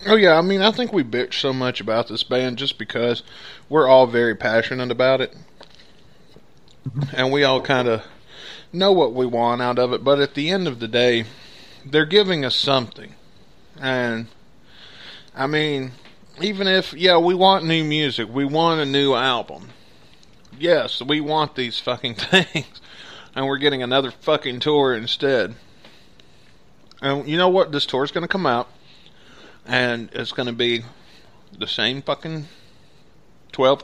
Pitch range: 120-150 Hz